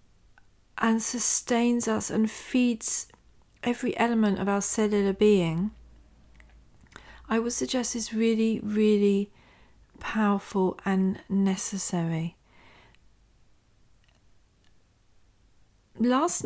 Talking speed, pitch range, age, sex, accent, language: 75 wpm, 190-235 Hz, 40-59, female, British, English